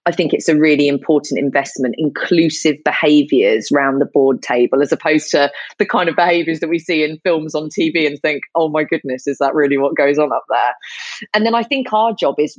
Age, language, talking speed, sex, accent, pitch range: 30-49, English, 225 wpm, female, British, 140-165 Hz